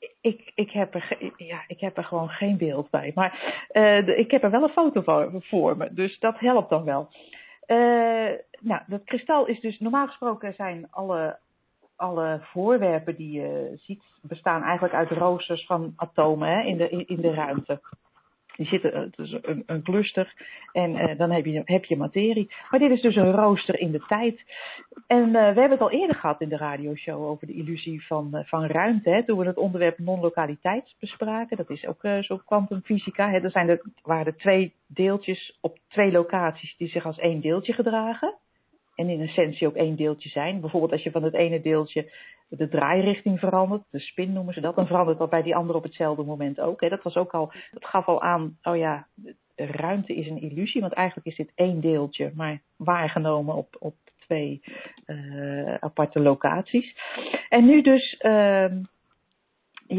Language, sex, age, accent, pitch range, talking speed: Dutch, female, 40-59, Dutch, 160-215 Hz, 195 wpm